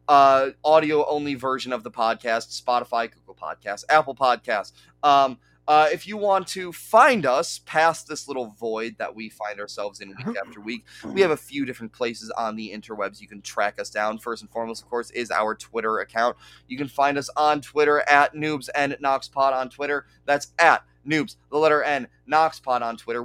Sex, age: male, 30-49